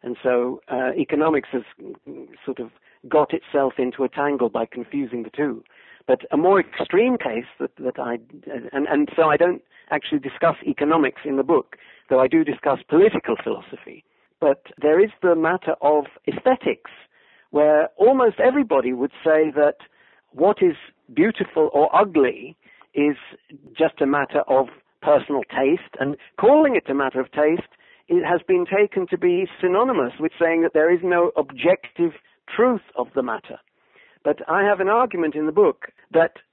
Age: 50-69